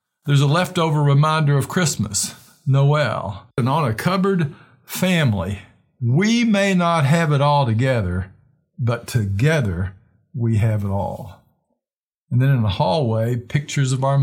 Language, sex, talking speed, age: English, male, 140 wpm, 50-69